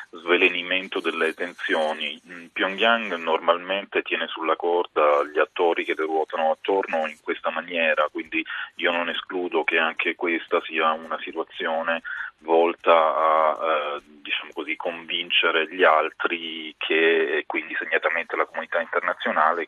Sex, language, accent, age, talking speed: male, Italian, native, 30-49, 120 wpm